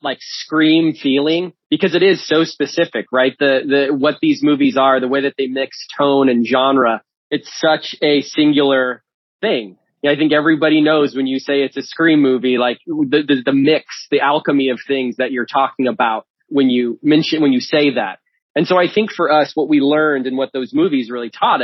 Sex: male